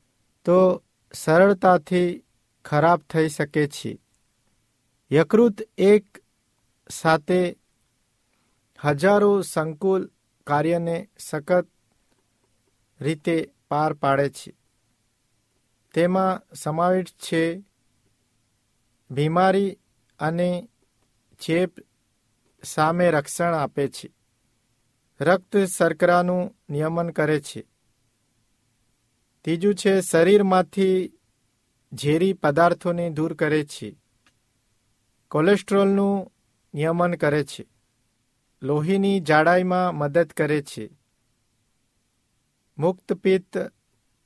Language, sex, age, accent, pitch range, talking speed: Hindi, male, 50-69, native, 120-175 Hz, 55 wpm